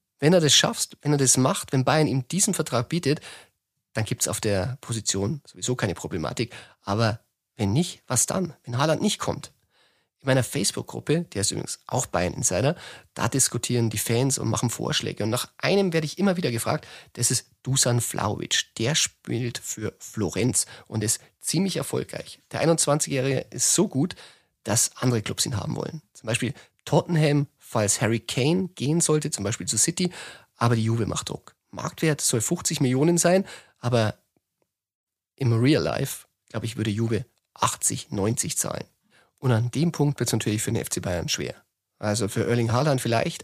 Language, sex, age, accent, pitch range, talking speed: German, male, 30-49, German, 115-155 Hz, 180 wpm